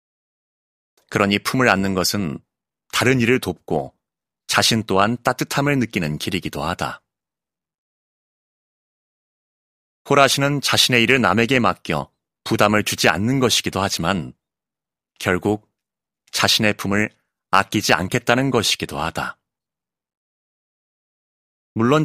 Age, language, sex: 30-49, Korean, male